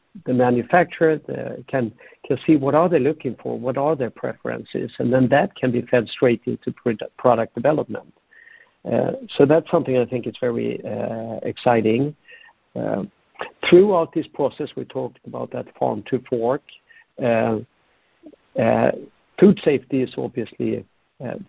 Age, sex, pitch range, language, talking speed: 60-79, male, 120-165 Hz, English, 150 wpm